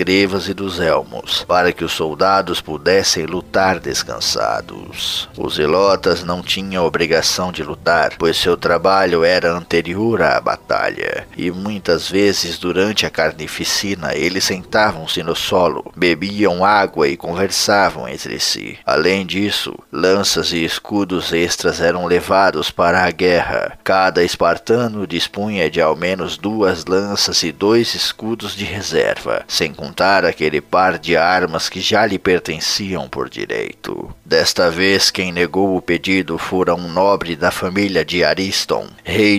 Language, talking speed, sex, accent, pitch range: Portuguese, 135 wpm, male, Brazilian, 85-100 Hz